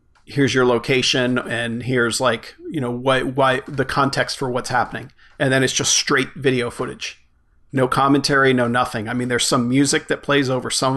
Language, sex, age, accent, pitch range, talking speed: English, male, 40-59, American, 120-140 Hz, 190 wpm